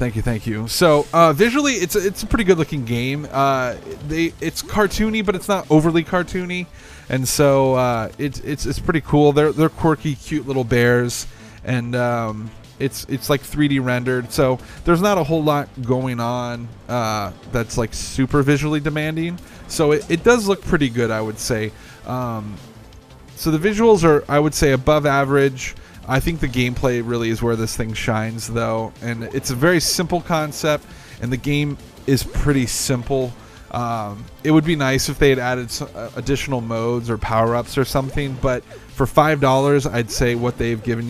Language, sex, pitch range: English, male, 115-150 Hz